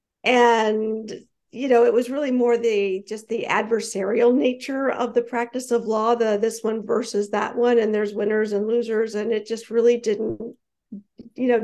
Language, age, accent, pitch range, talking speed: English, 50-69, American, 210-235 Hz, 180 wpm